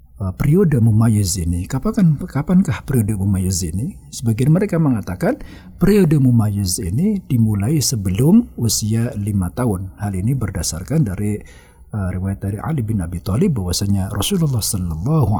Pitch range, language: 100-140 Hz, Indonesian